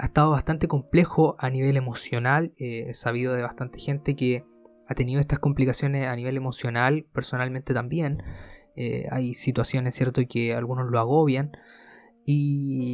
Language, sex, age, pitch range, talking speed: Spanish, male, 20-39, 125-155 Hz, 150 wpm